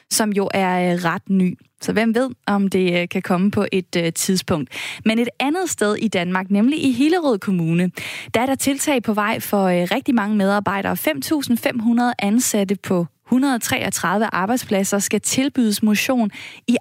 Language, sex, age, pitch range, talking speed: Danish, female, 20-39, 190-240 Hz, 155 wpm